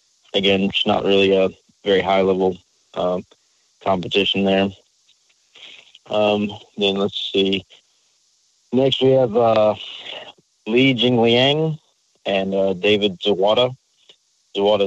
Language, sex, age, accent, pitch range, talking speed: English, male, 30-49, American, 100-110 Hz, 110 wpm